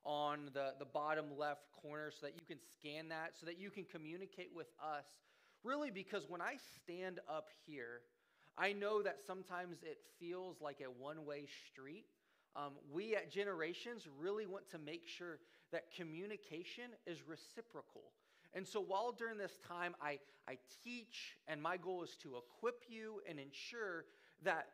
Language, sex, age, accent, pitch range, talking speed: English, male, 30-49, American, 155-220 Hz, 165 wpm